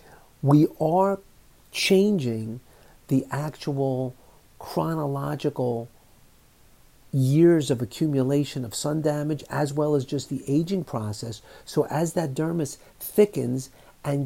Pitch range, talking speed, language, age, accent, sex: 130-160 Hz, 105 wpm, English, 50-69, American, male